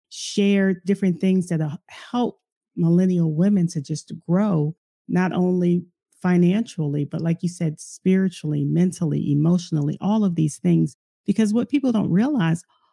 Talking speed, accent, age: 135 wpm, American, 40-59